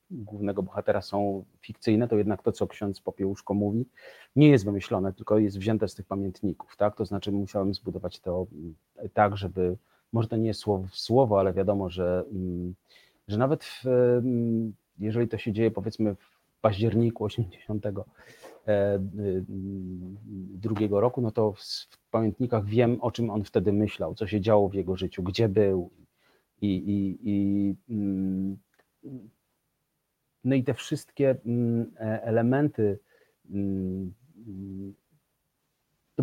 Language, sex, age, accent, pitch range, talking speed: Polish, male, 40-59, native, 95-120 Hz, 130 wpm